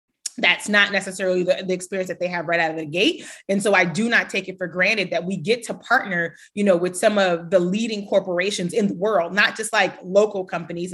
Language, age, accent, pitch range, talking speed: English, 30-49, American, 180-225 Hz, 240 wpm